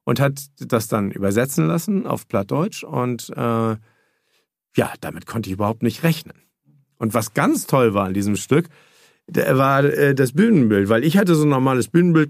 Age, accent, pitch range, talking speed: 50-69, German, 110-150 Hz, 180 wpm